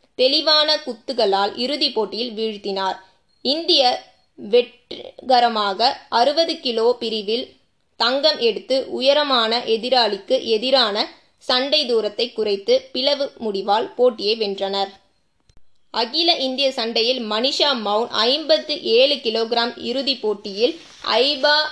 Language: Tamil